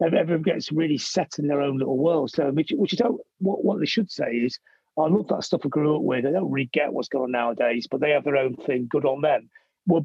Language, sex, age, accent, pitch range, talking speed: English, male, 40-59, British, 135-180 Hz, 275 wpm